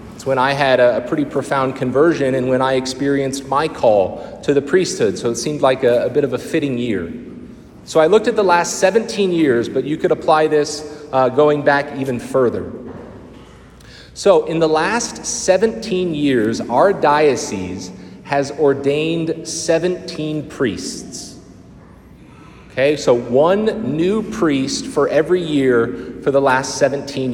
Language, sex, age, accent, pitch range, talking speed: English, male, 30-49, American, 130-185 Hz, 150 wpm